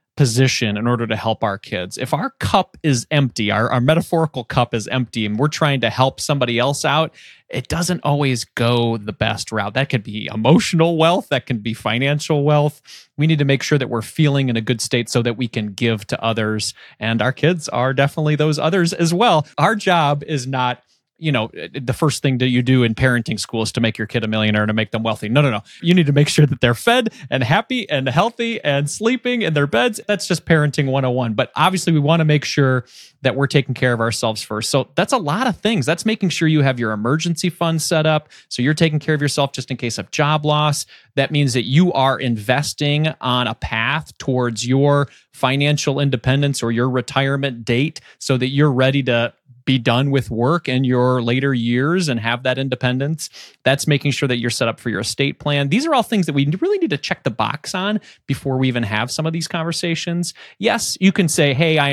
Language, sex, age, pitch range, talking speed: English, male, 30-49, 120-155 Hz, 230 wpm